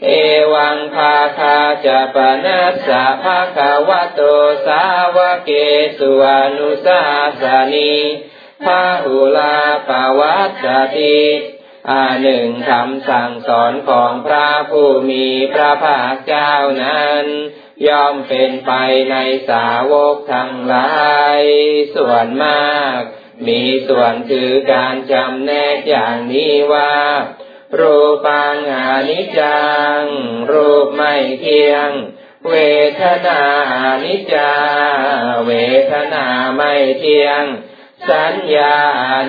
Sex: male